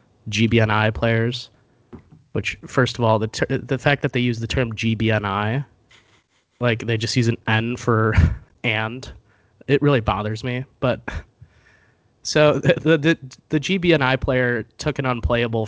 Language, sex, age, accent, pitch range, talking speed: English, male, 20-39, American, 110-155 Hz, 145 wpm